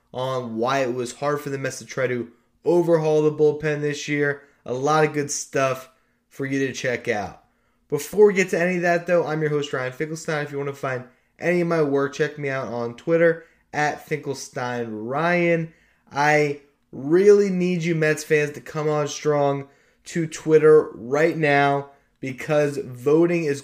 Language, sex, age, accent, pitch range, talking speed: English, male, 20-39, American, 135-155 Hz, 185 wpm